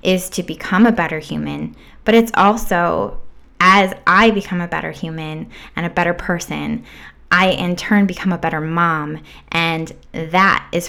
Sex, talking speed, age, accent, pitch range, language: female, 160 wpm, 10-29, American, 170-245 Hz, English